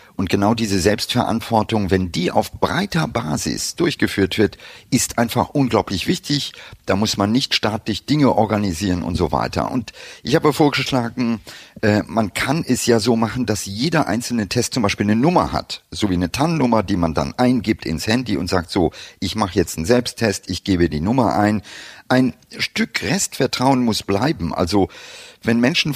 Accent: German